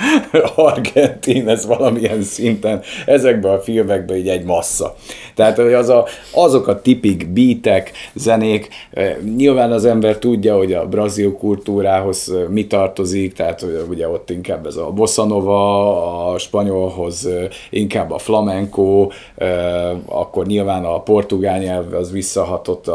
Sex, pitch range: male, 95-110 Hz